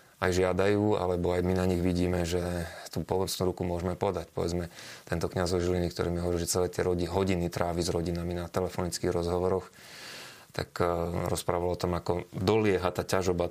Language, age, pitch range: Slovak, 20-39, 85-95 Hz